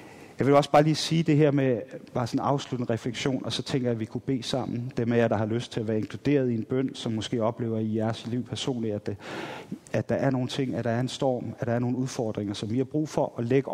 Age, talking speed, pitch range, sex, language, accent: 30-49, 290 wpm, 120-155 Hz, male, Danish, native